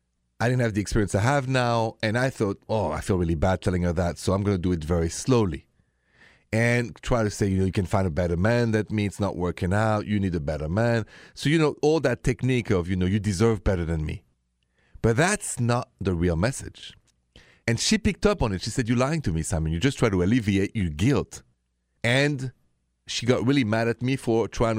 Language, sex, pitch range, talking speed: English, male, 90-125 Hz, 235 wpm